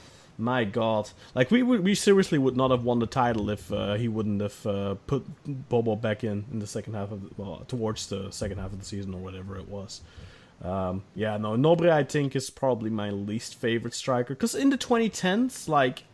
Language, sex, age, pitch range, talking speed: English, male, 30-49, 110-140 Hz, 215 wpm